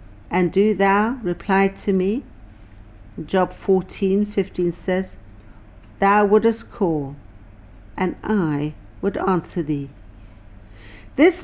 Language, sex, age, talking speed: English, female, 60-79, 100 wpm